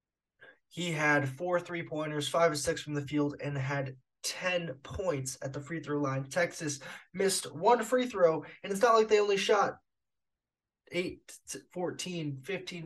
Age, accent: 20-39, American